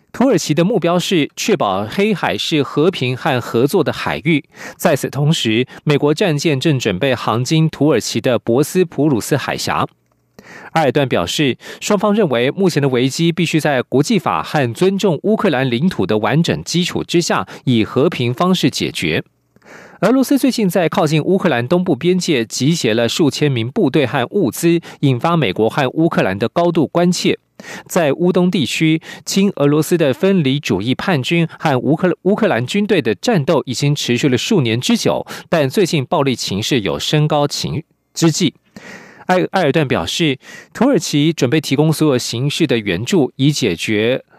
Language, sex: French, male